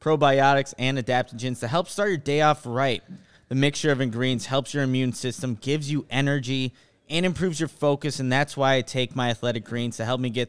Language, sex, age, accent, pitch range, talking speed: English, male, 20-39, American, 120-150 Hz, 210 wpm